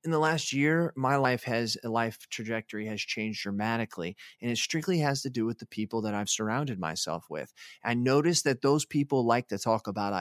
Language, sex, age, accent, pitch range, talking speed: English, male, 20-39, American, 110-140 Hz, 210 wpm